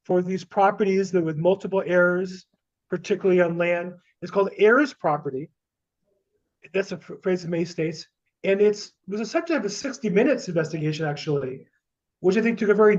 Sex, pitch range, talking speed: male, 170-220 Hz, 175 wpm